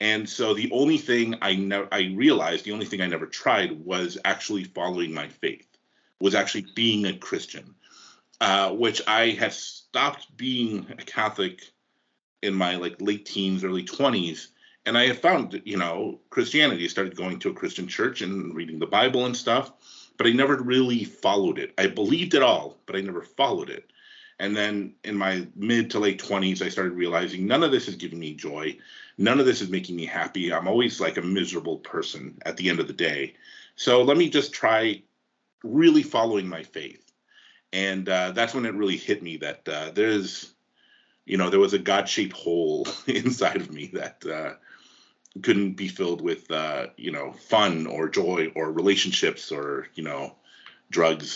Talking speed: 190 wpm